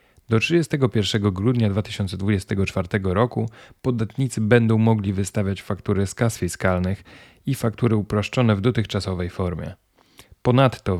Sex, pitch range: male, 95-115 Hz